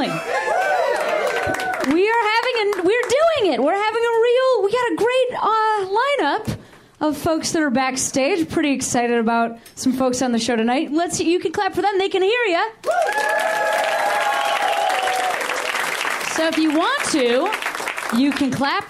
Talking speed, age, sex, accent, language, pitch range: 155 wpm, 30-49, female, American, English, 235-385 Hz